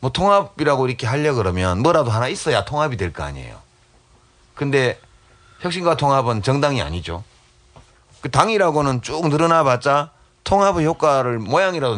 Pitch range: 100-150 Hz